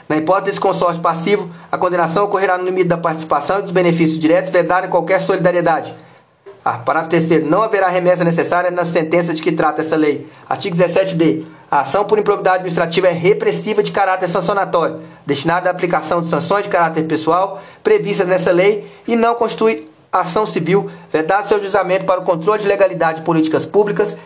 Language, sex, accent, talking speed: Portuguese, male, Brazilian, 185 wpm